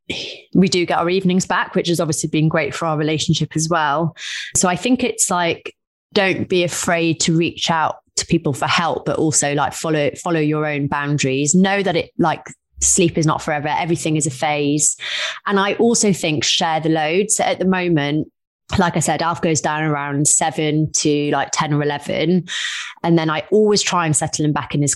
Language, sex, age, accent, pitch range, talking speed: English, female, 20-39, British, 150-180 Hz, 205 wpm